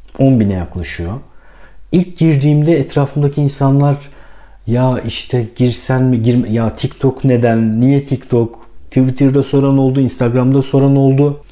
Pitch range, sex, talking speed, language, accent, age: 95-135 Hz, male, 120 wpm, Turkish, native, 50-69